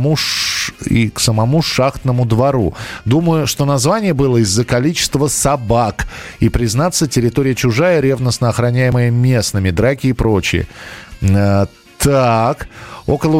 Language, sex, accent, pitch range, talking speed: Russian, male, native, 115-150 Hz, 110 wpm